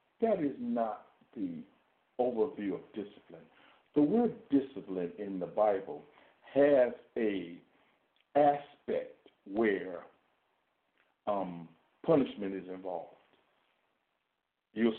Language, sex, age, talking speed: English, male, 60-79, 90 wpm